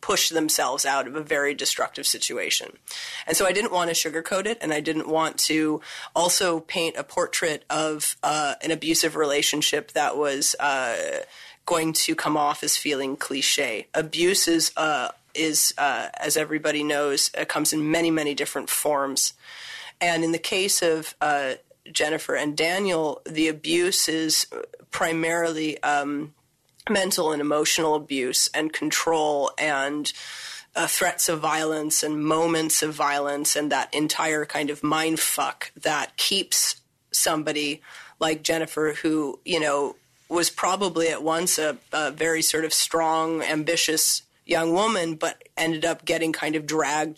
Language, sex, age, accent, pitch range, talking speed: English, female, 30-49, American, 150-165 Hz, 155 wpm